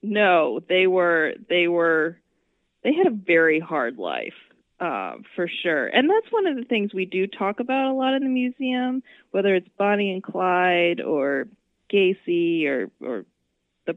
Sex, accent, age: female, American, 20-39